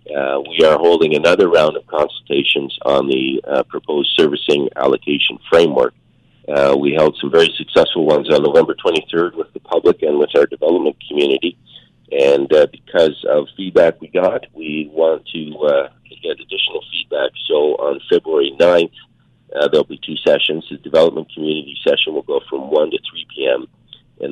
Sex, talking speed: male, 170 wpm